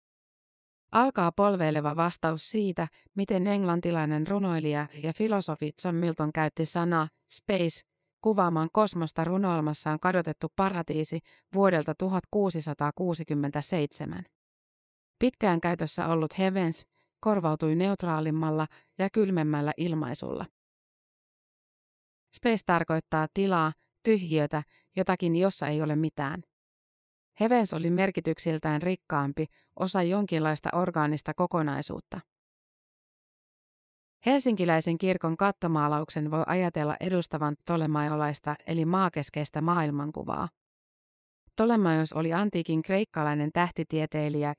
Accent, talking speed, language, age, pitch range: native, 85 wpm, Finnish, 30-49, 155-185 Hz